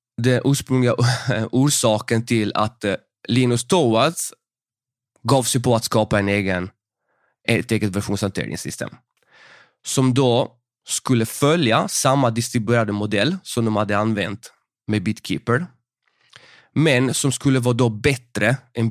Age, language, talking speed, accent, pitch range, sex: 20-39, Swedish, 110 wpm, native, 105-125 Hz, male